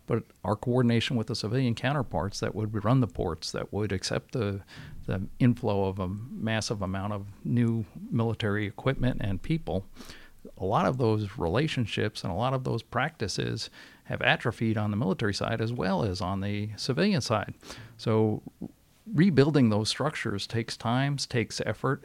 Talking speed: 165 wpm